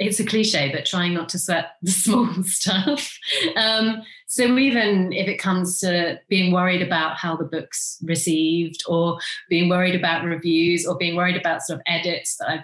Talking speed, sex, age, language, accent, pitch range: 185 wpm, female, 30-49, English, British, 160-190 Hz